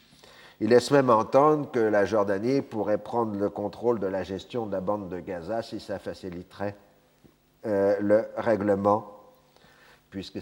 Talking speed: 150 wpm